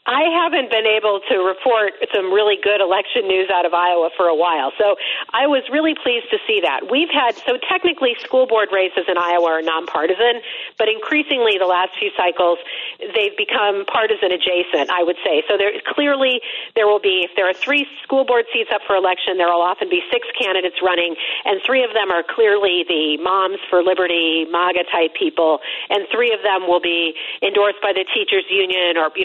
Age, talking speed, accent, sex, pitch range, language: 40-59, 200 wpm, American, female, 180-280 Hz, English